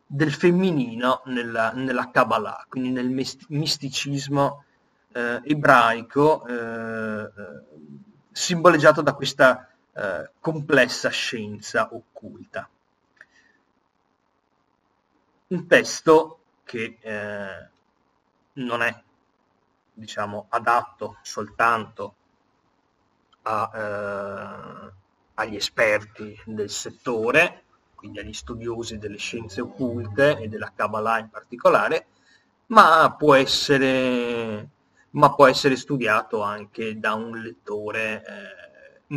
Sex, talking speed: male, 85 wpm